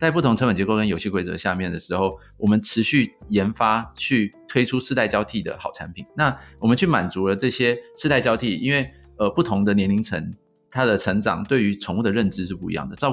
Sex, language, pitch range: male, Chinese, 100-125 Hz